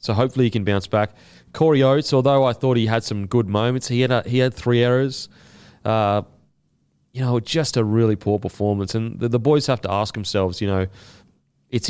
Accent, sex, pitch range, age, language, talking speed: Australian, male, 95-125 Hz, 30-49, English, 210 wpm